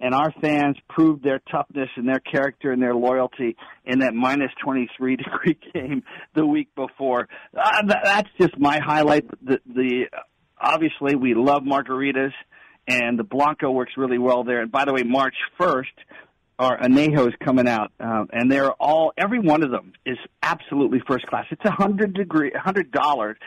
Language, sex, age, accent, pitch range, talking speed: English, male, 50-69, American, 125-155 Hz, 170 wpm